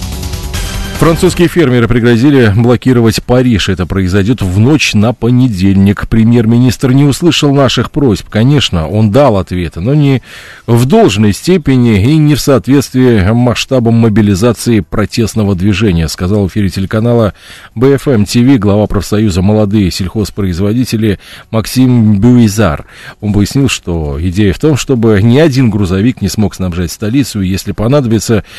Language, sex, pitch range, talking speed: Russian, male, 95-130 Hz, 125 wpm